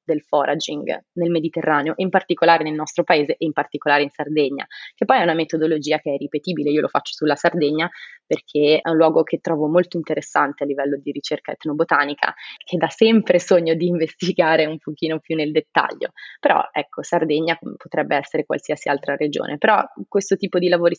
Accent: native